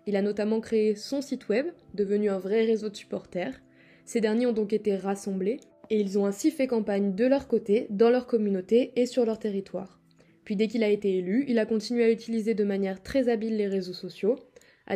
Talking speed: 215 wpm